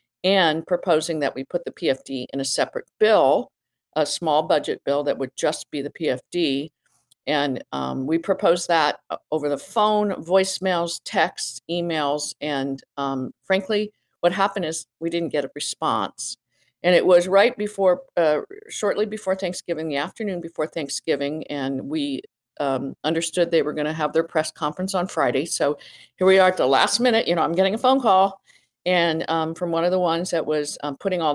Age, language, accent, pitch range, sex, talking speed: 50-69, English, American, 145-185 Hz, female, 185 wpm